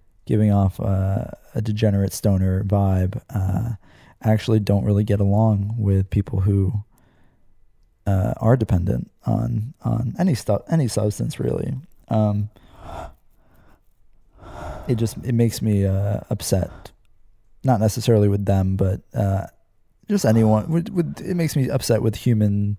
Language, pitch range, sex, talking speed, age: English, 100-115 Hz, male, 130 wpm, 20-39